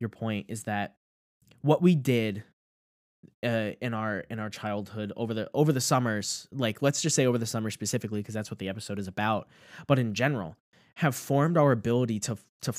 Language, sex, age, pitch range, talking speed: English, male, 10-29, 105-135 Hz, 195 wpm